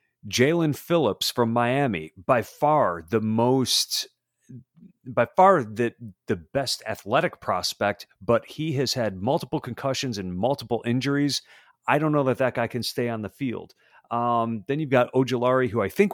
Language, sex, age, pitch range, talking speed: English, male, 40-59, 115-145 Hz, 165 wpm